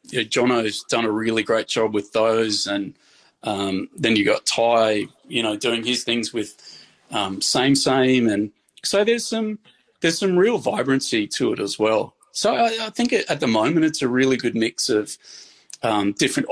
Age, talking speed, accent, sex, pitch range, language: 30-49, 185 wpm, Australian, male, 105-140 Hz, English